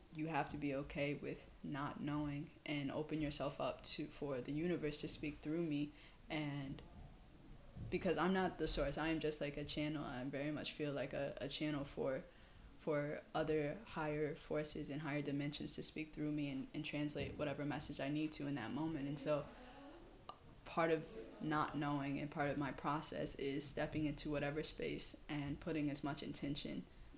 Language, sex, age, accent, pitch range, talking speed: English, female, 20-39, American, 145-160 Hz, 185 wpm